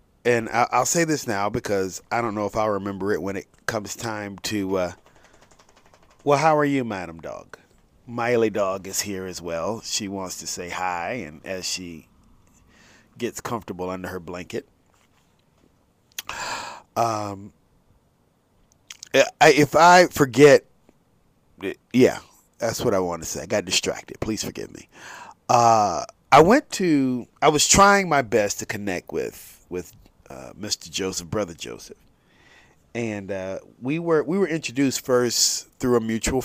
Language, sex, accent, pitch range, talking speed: English, male, American, 100-130 Hz, 150 wpm